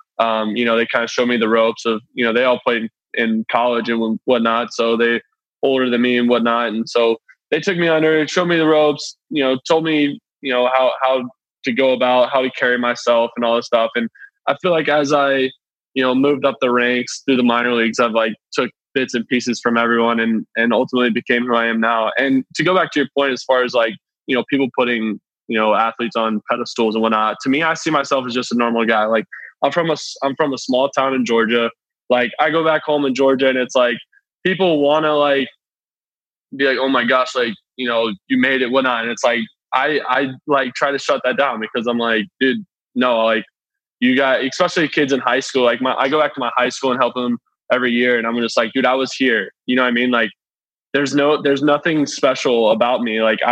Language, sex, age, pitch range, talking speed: English, male, 20-39, 115-140 Hz, 245 wpm